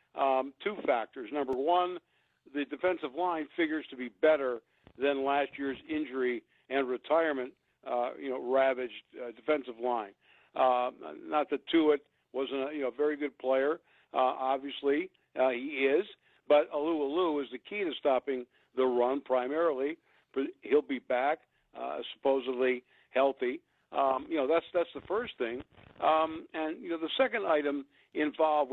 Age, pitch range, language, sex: 60-79, 130-160 Hz, English, male